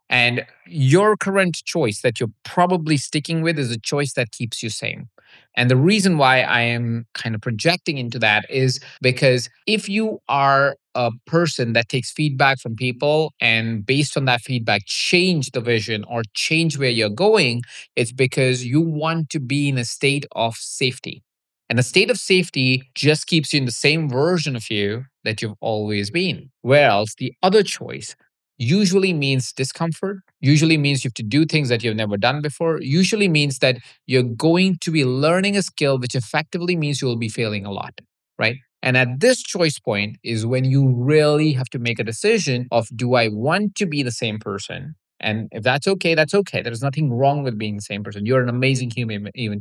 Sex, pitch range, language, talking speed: male, 120-155 Hz, English, 195 wpm